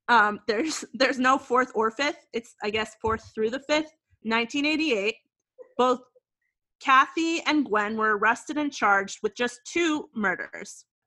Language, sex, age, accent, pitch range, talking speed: English, female, 30-49, American, 215-280 Hz, 145 wpm